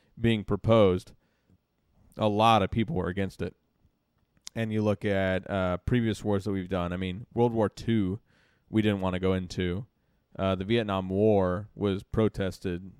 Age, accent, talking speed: 30-49, American, 165 wpm